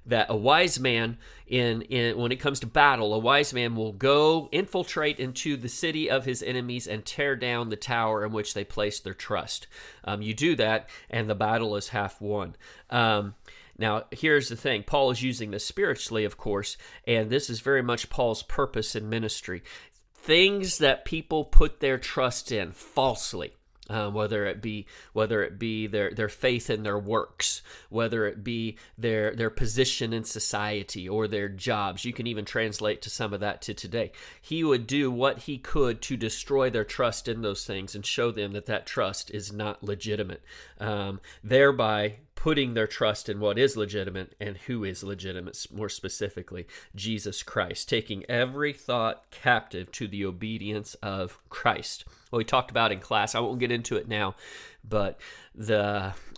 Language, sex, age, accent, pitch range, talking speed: English, male, 40-59, American, 105-130 Hz, 180 wpm